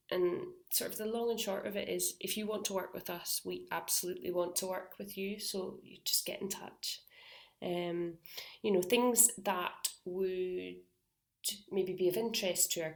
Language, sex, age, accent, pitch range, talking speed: English, female, 30-49, British, 165-205 Hz, 195 wpm